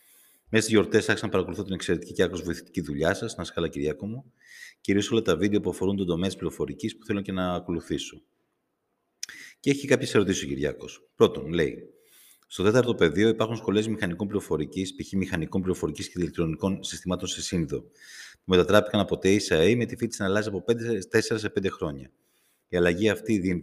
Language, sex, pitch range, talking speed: Greek, male, 85-110 Hz, 185 wpm